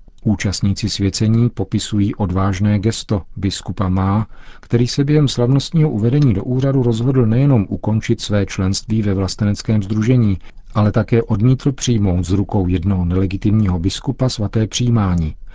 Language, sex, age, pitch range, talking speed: Czech, male, 40-59, 100-115 Hz, 125 wpm